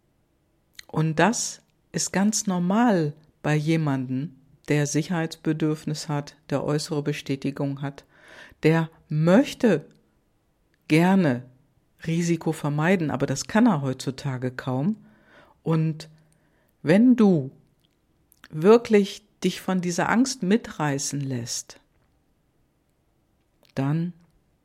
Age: 50-69